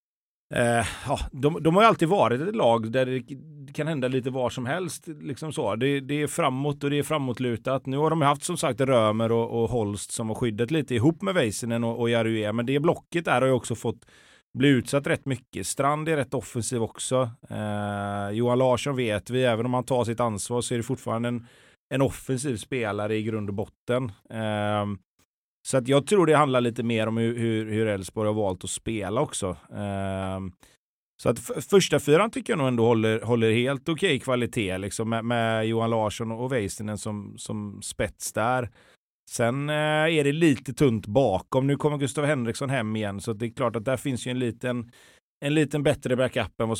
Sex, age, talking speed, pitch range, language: male, 30-49, 210 wpm, 110-140 Hz, Swedish